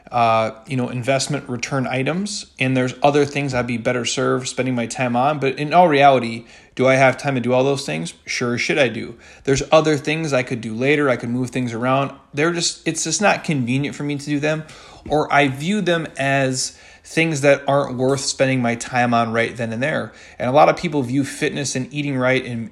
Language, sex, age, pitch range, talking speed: English, male, 30-49, 125-145 Hz, 225 wpm